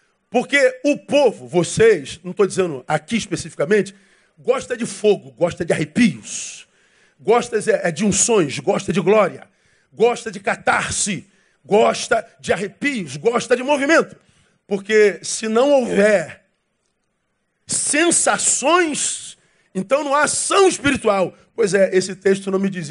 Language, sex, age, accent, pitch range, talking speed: Portuguese, male, 40-59, Brazilian, 190-255 Hz, 125 wpm